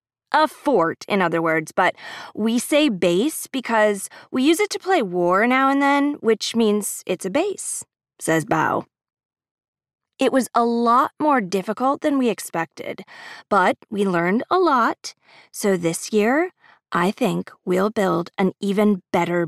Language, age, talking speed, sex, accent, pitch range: English, 20-39, 155 wpm, female, American, 195-295 Hz